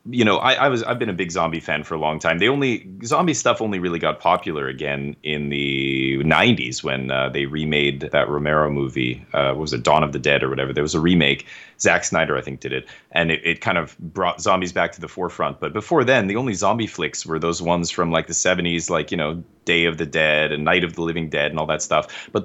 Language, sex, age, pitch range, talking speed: English, male, 30-49, 75-110 Hz, 255 wpm